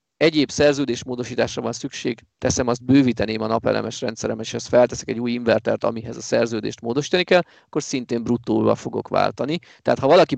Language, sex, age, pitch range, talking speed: Hungarian, male, 30-49, 120-155 Hz, 170 wpm